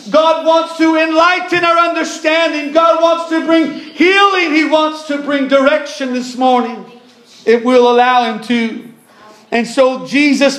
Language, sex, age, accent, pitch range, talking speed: English, male, 40-59, American, 245-280 Hz, 145 wpm